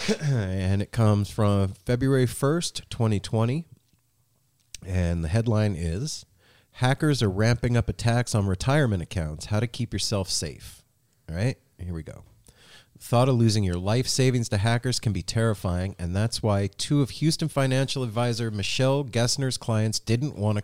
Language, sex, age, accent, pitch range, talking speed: English, male, 40-59, American, 95-125 Hz, 160 wpm